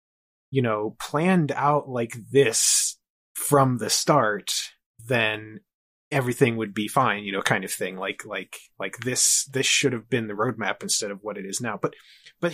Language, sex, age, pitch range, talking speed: English, male, 20-39, 110-145 Hz, 175 wpm